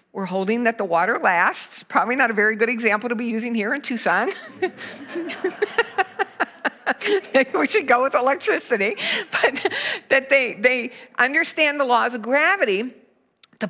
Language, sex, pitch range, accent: English, female, 205-275 Hz, American